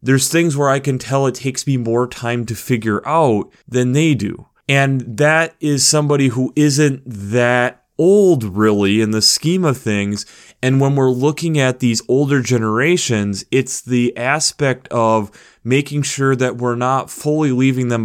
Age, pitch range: 30-49, 105-130 Hz